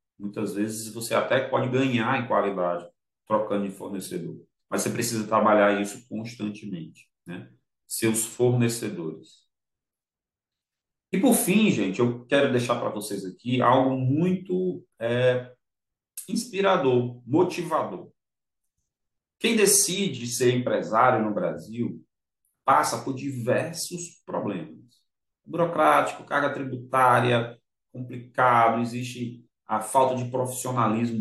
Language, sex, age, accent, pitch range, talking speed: Portuguese, male, 40-59, Brazilian, 105-135 Hz, 100 wpm